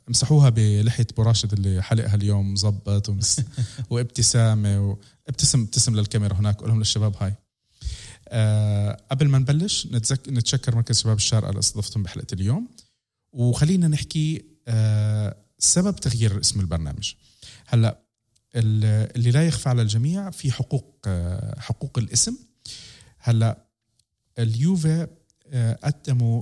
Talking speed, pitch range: 105 wpm, 105-130 Hz